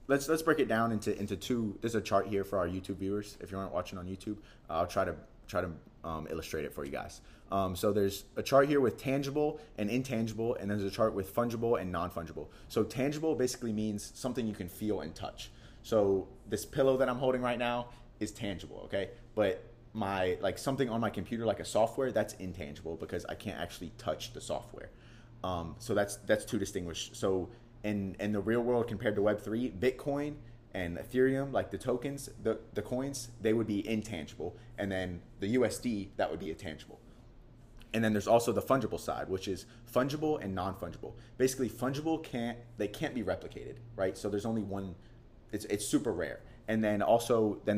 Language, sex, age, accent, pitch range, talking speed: English, male, 30-49, American, 95-120 Hz, 205 wpm